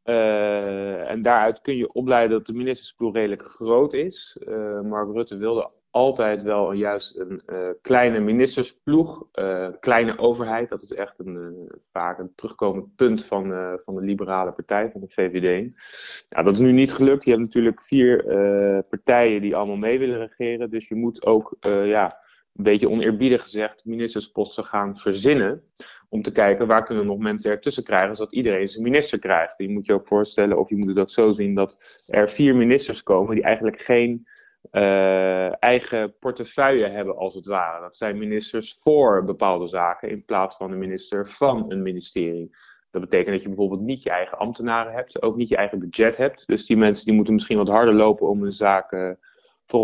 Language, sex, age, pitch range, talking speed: Dutch, male, 30-49, 100-120 Hz, 190 wpm